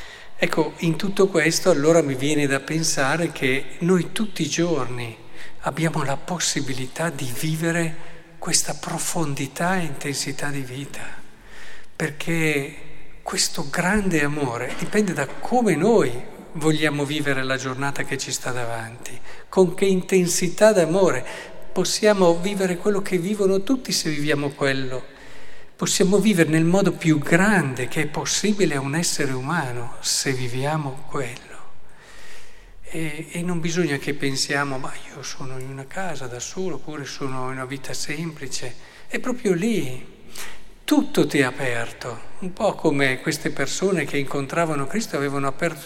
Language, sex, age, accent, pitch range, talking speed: Italian, male, 50-69, native, 140-180 Hz, 140 wpm